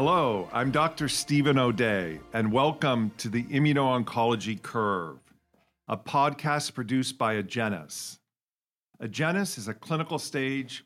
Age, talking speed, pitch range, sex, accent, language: 50-69, 115 wpm, 105-145 Hz, male, American, English